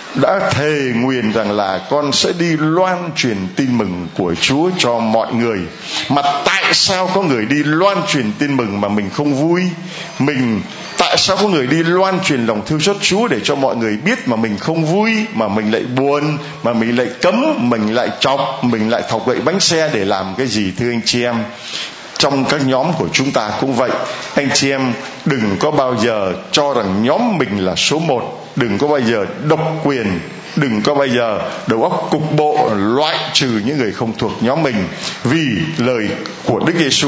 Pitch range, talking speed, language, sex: 115-170 Hz, 205 wpm, Vietnamese, male